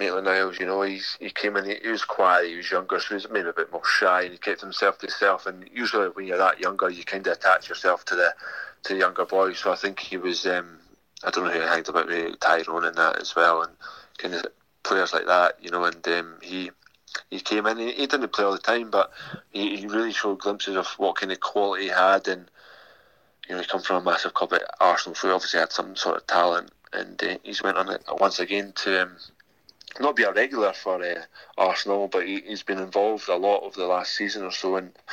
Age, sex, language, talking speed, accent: 30-49, male, English, 255 wpm, British